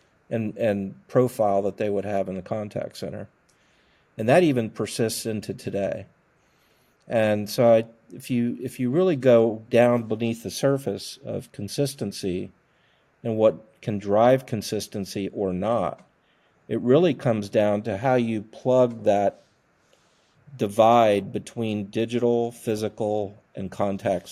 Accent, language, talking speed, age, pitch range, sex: American, English, 130 wpm, 50-69, 100-115 Hz, male